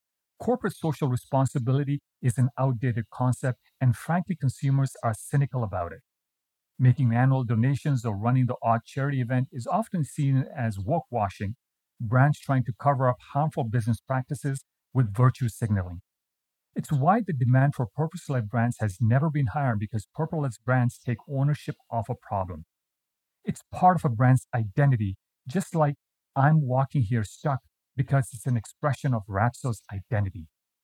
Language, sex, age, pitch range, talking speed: English, male, 40-59, 115-145 Hz, 150 wpm